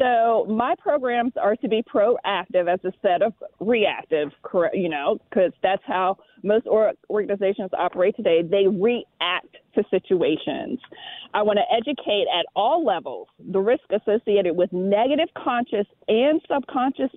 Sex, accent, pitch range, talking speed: female, American, 195-270 Hz, 140 wpm